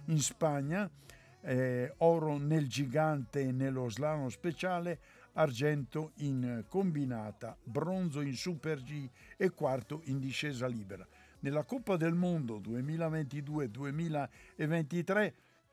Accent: native